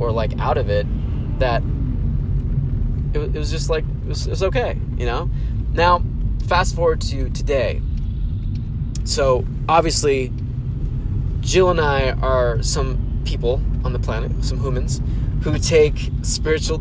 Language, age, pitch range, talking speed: English, 20-39, 120-130 Hz, 135 wpm